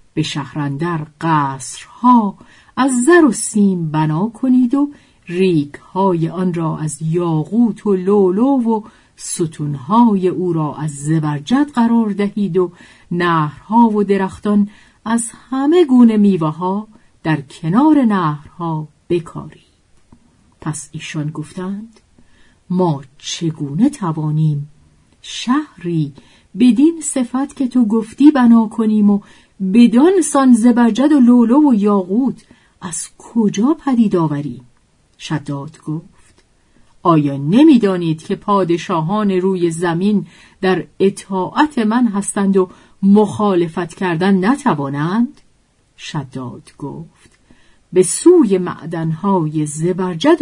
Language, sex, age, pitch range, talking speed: Persian, female, 50-69, 155-230 Hz, 100 wpm